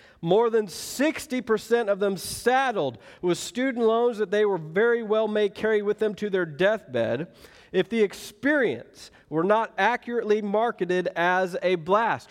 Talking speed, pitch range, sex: 150 wpm, 180-220 Hz, male